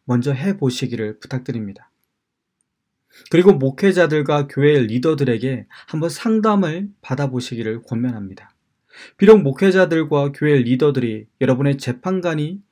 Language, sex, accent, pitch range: Korean, male, native, 125-160 Hz